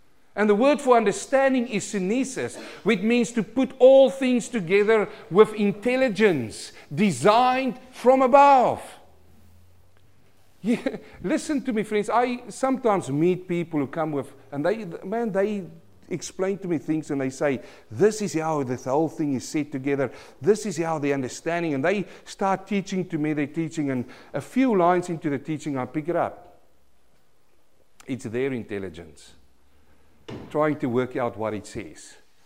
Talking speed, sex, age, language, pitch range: 155 wpm, male, 50-69, English, 130-200 Hz